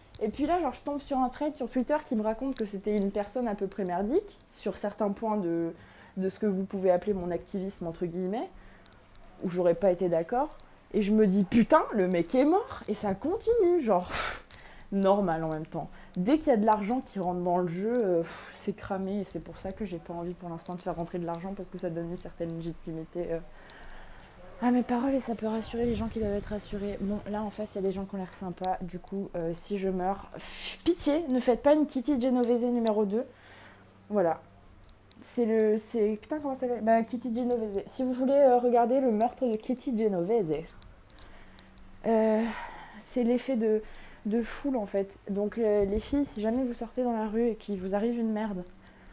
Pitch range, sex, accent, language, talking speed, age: 180-245 Hz, female, French, French, 220 wpm, 20-39